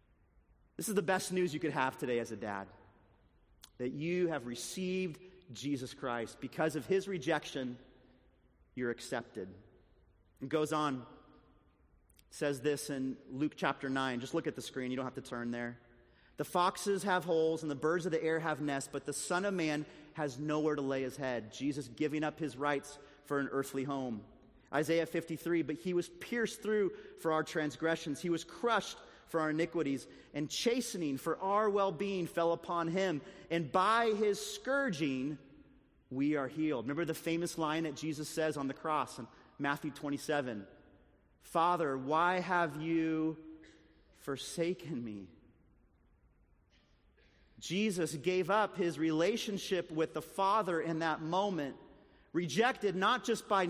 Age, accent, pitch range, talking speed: 30-49, American, 135-185 Hz, 160 wpm